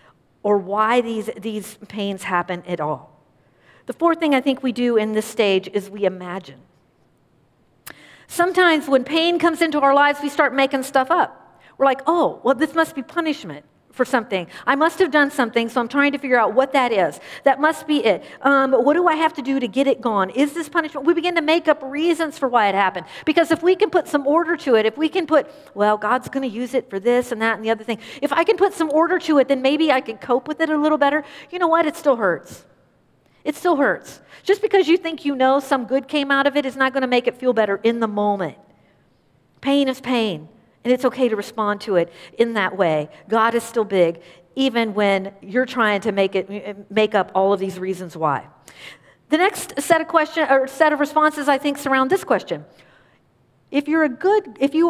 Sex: female